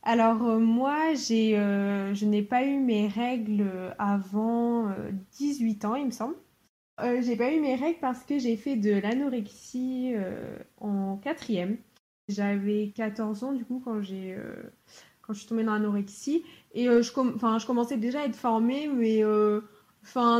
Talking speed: 175 wpm